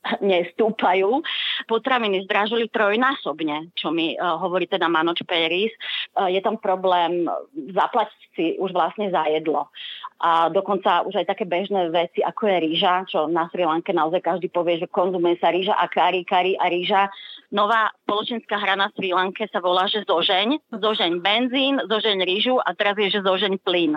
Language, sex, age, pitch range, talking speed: Slovak, female, 30-49, 180-205 Hz, 170 wpm